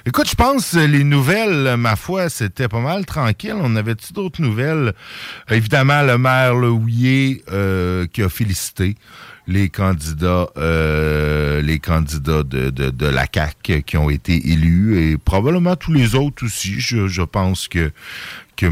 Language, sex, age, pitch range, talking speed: French, male, 50-69, 80-125 Hz, 155 wpm